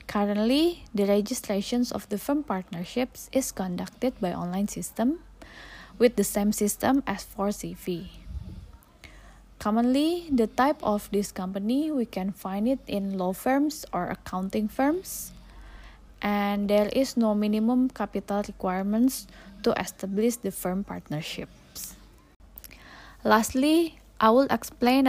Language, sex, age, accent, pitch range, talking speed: Indonesian, female, 20-39, native, 190-250 Hz, 120 wpm